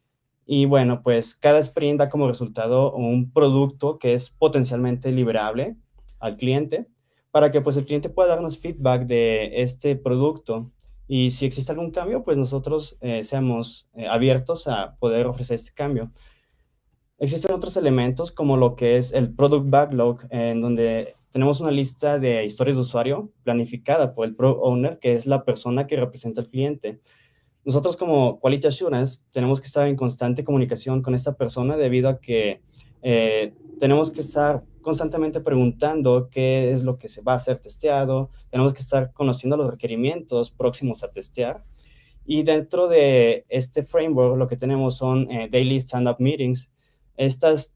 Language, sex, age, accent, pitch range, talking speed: Spanish, male, 20-39, Mexican, 125-145 Hz, 160 wpm